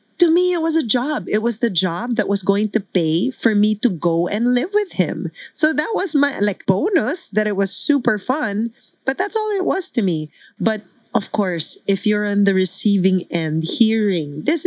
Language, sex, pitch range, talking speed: English, female, 175-245 Hz, 215 wpm